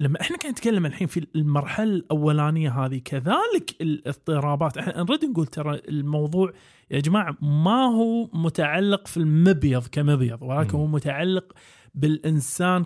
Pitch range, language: 145-180 Hz, Arabic